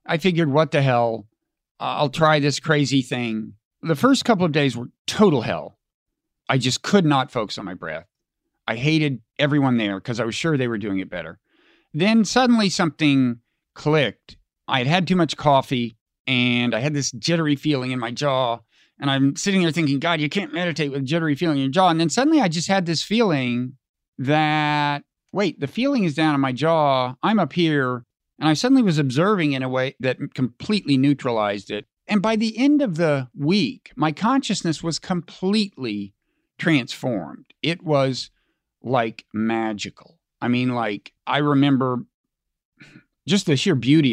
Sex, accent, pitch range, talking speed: male, American, 125-170 Hz, 180 wpm